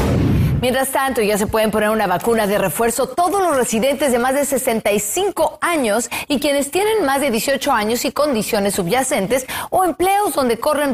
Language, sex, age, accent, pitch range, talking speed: Spanish, female, 30-49, Mexican, 220-290 Hz, 175 wpm